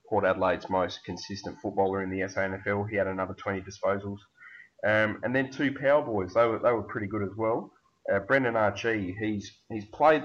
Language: English